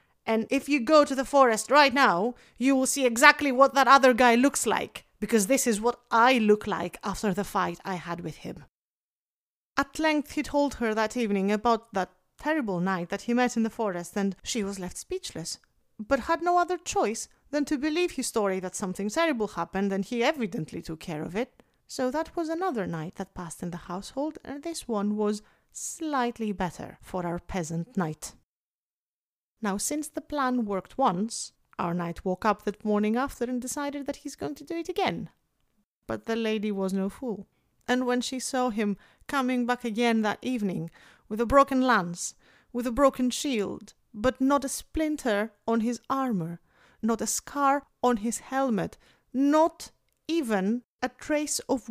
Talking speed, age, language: 185 wpm, 30-49, English